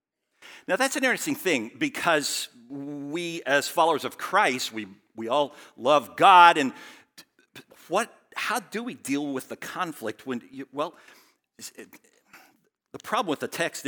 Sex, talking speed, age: male, 150 wpm, 50-69